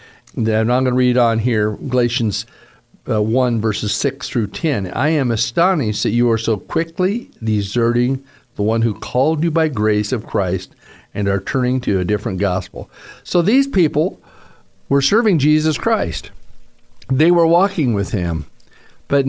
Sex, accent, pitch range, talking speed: male, American, 125-195 Hz, 160 wpm